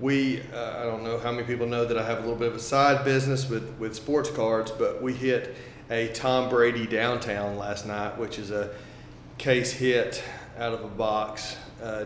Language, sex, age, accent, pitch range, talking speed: English, male, 30-49, American, 105-120 Hz, 210 wpm